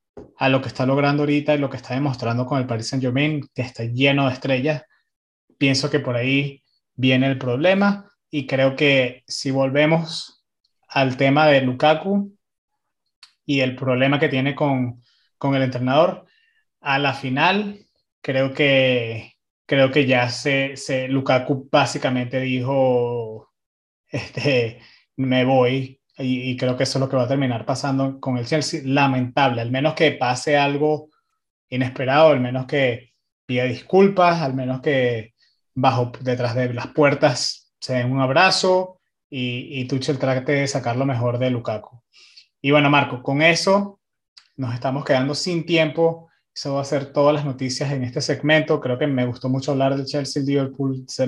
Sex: male